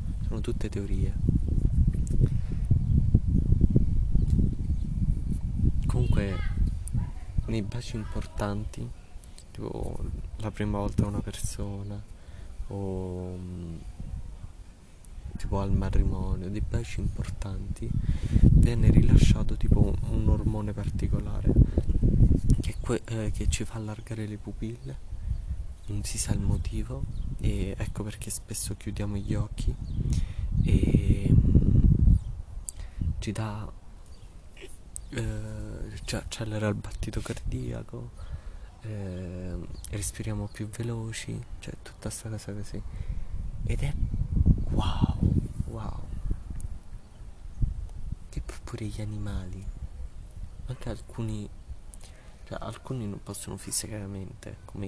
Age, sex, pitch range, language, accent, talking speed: 20-39, male, 90-110 Hz, Italian, native, 90 wpm